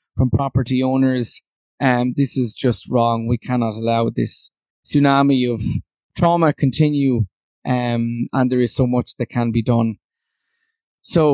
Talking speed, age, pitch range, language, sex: 145 wpm, 20-39, 115-135 Hz, English, male